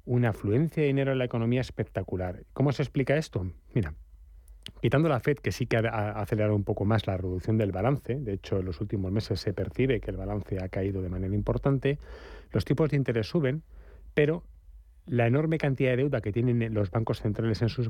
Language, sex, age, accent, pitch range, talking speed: Spanish, male, 30-49, Spanish, 100-135 Hz, 210 wpm